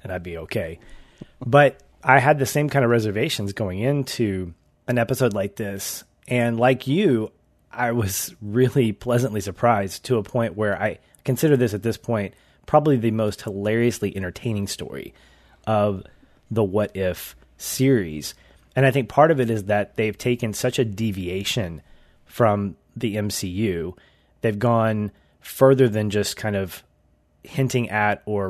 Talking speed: 155 wpm